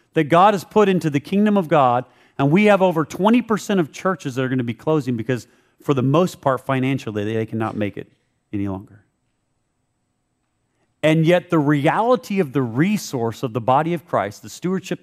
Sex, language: male, English